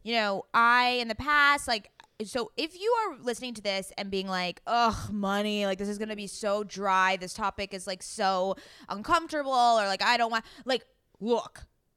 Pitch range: 200-260 Hz